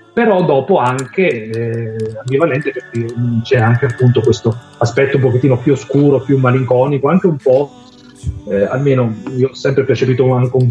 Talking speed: 155 wpm